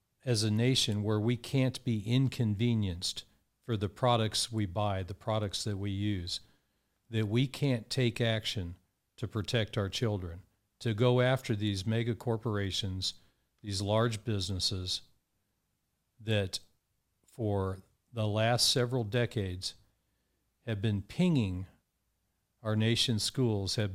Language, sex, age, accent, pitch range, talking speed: English, male, 50-69, American, 100-125 Hz, 125 wpm